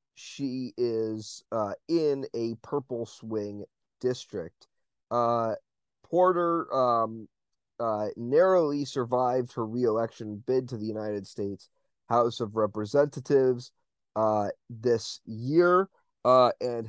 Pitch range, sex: 115-145 Hz, male